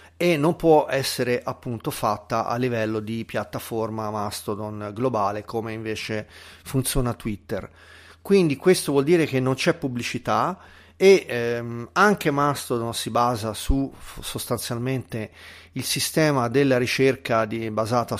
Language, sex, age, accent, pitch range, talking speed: Italian, male, 30-49, native, 110-145 Hz, 130 wpm